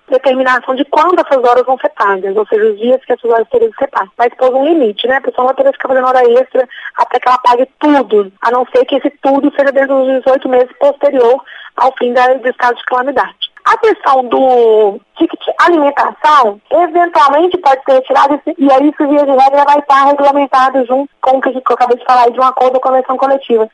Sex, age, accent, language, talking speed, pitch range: female, 20-39, Brazilian, English, 220 wpm, 250-290 Hz